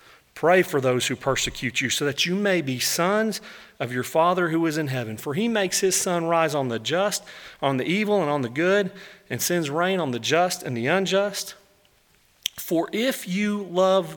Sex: male